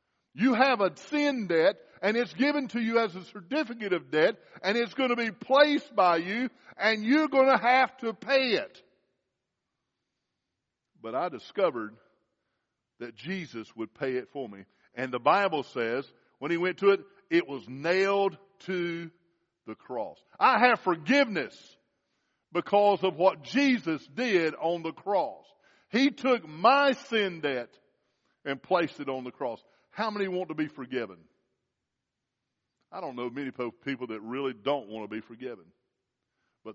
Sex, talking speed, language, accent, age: male, 160 wpm, English, American, 50-69